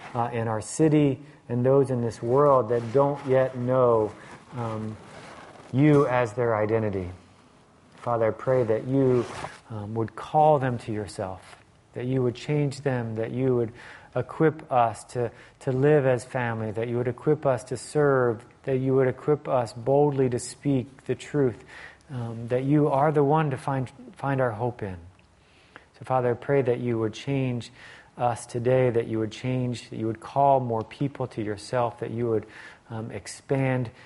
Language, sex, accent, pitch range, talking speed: English, male, American, 110-135 Hz, 175 wpm